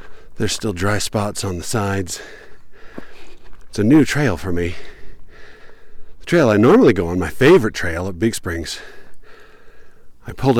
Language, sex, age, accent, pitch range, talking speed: English, male, 50-69, American, 85-115 Hz, 155 wpm